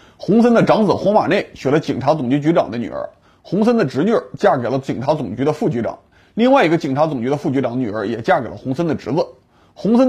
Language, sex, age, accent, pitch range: Chinese, male, 30-49, Polish, 140-185 Hz